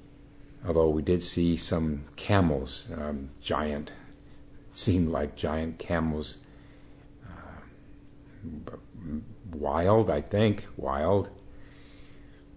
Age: 50-69